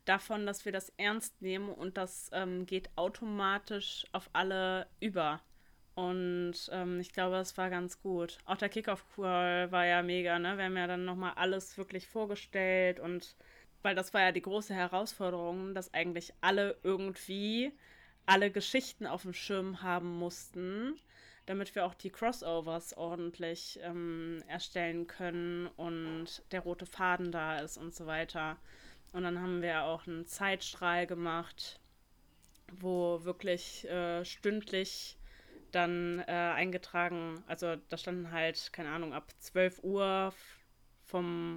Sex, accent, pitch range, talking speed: female, German, 175-190 Hz, 145 wpm